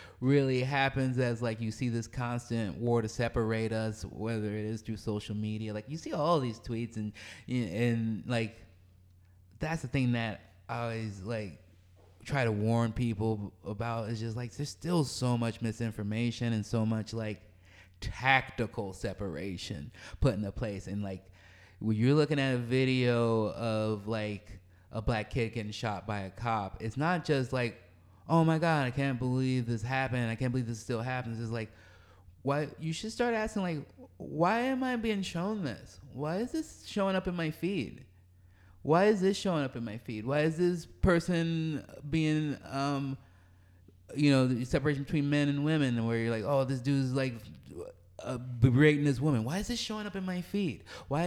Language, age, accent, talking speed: English, 20-39, American, 185 wpm